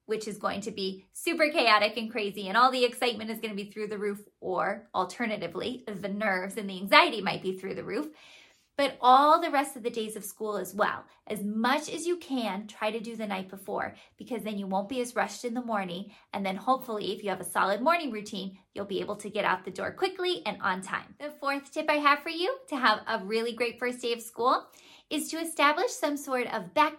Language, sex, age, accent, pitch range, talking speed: English, female, 20-39, American, 210-285 Hz, 240 wpm